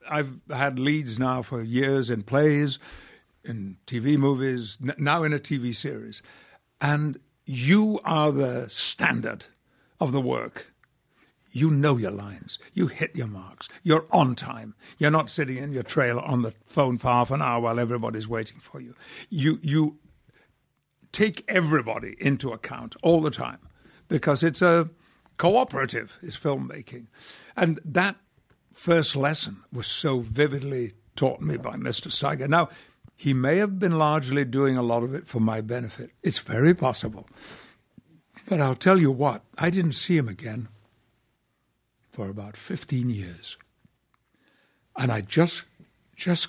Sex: male